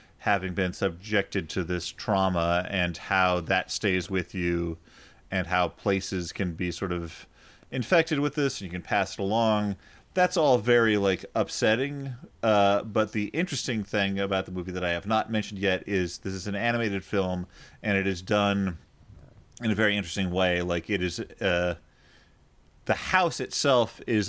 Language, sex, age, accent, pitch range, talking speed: English, male, 30-49, American, 95-110 Hz, 175 wpm